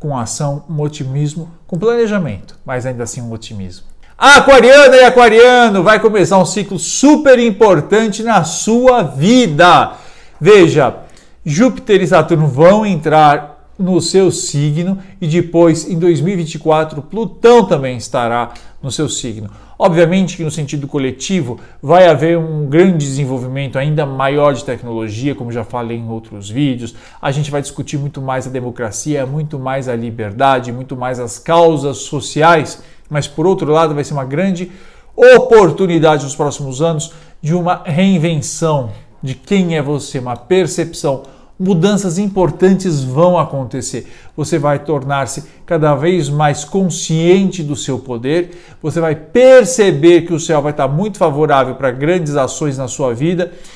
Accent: Brazilian